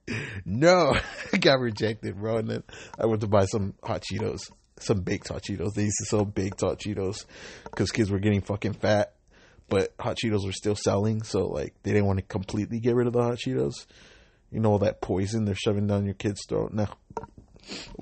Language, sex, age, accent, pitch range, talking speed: English, male, 30-49, American, 100-115 Hz, 205 wpm